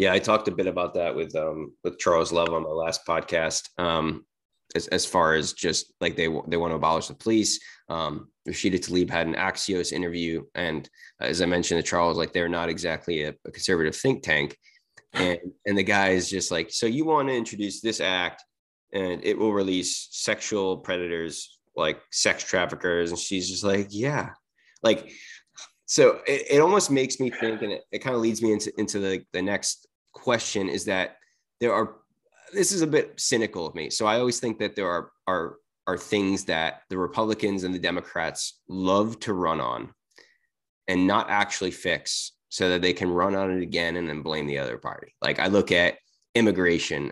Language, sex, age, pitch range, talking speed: English, male, 20-39, 90-110 Hz, 200 wpm